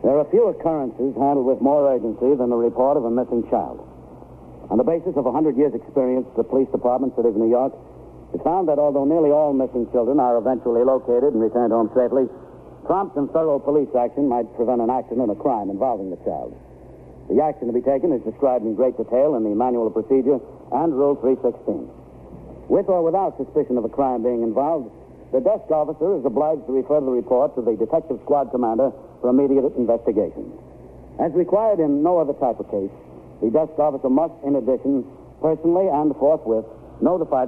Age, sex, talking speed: 70-89, male, 195 wpm